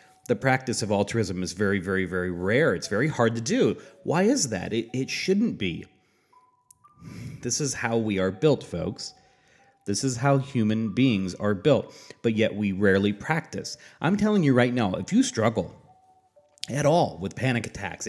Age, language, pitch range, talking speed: 30-49, English, 105-150 Hz, 175 wpm